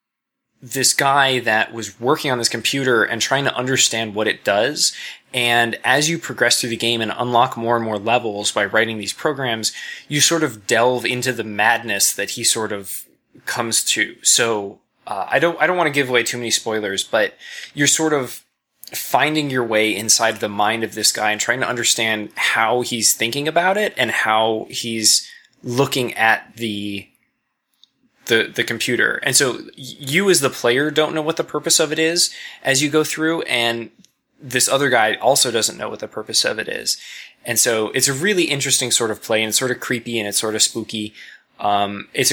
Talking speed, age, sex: 200 wpm, 20-39, male